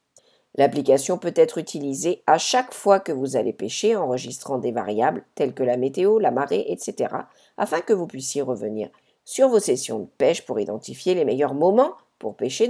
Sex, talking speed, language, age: female, 180 wpm, English, 50-69